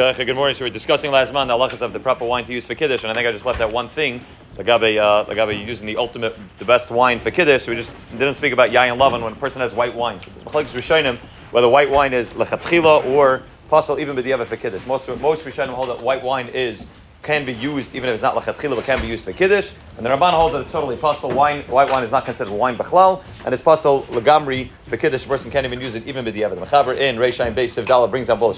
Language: English